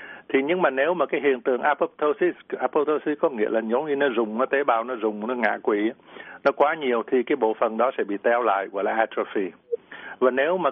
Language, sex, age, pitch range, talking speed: Vietnamese, male, 60-79, 115-150 Hz, 240 wpm